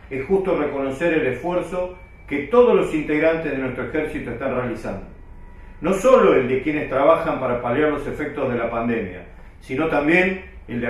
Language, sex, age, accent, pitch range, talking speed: Spanish, male, 40-59, Argentinian, 130-180 Hz, 170 wpm